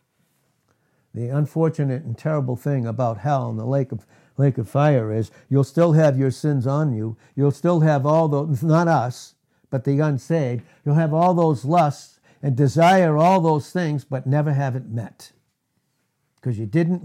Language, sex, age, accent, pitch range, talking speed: English, male, 60-79, American, 120-150 Hz, 175 wpm